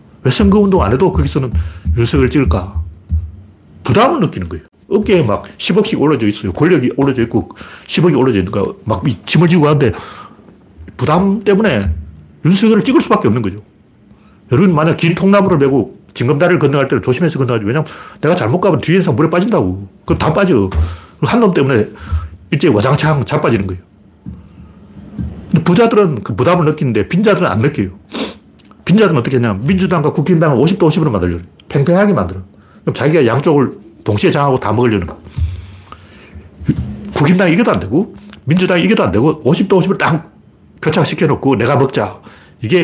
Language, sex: Korean, male